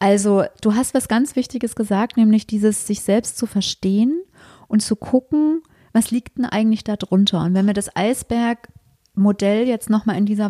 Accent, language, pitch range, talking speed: German, German, 200-235 Hz, 175 wpm